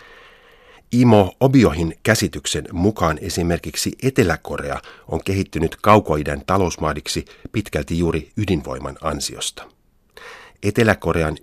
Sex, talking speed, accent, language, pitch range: male, 80 wpm, native, Finnish, 75-95 Hz